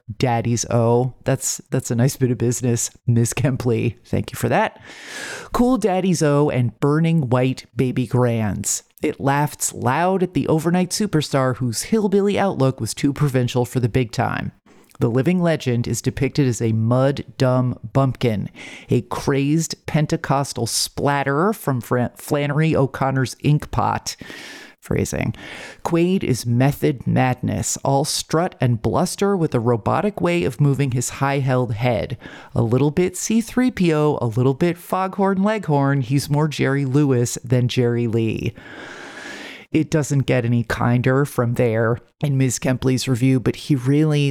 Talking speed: 145 wpm